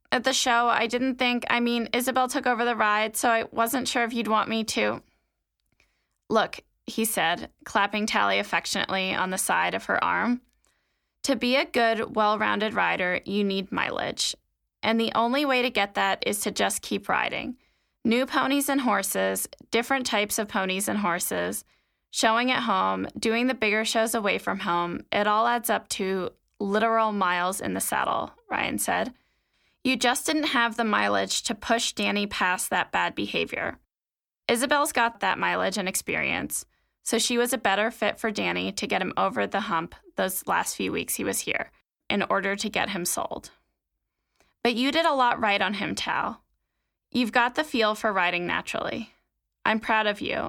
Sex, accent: female, American